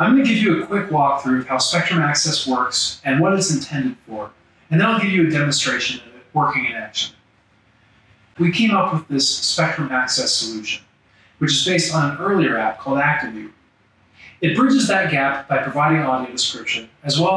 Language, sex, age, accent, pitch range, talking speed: English, male, 30-49, American, 125-170 Hz, 195 wpm